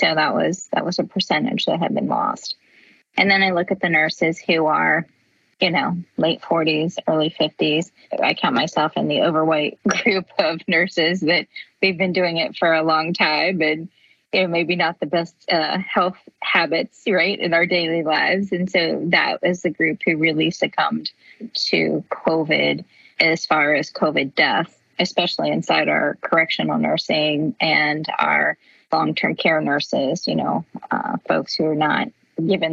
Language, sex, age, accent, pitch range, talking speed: English, female, 20-39, American, 160-185 Hz, 170 wpm